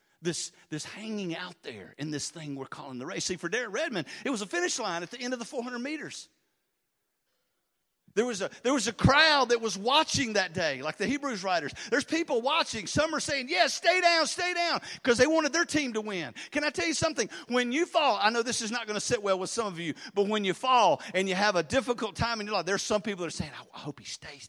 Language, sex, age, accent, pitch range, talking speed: English, male, 50-69, American, 165-255 Hz, 260 wpm